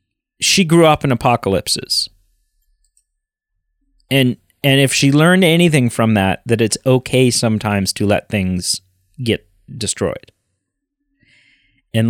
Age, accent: 30-49, American